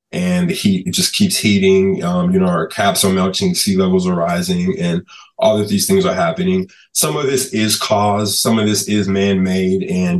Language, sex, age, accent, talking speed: English, male, 20-39, American, 210 wpm